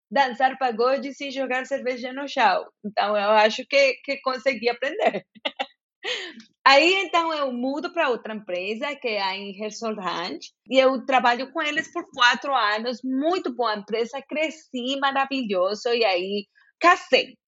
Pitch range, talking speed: 215-275 Hz, 145 wpm